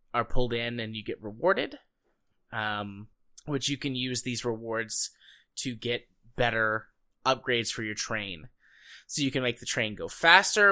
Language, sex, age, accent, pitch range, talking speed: English, male, 20-39, American, 110-130 Hz, 160 wpm